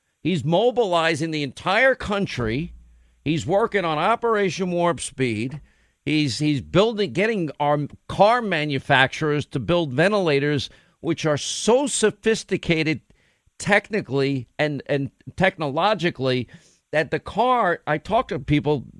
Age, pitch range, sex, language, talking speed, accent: 50-69, 135-185 Hz, male, English, 115 wpm, American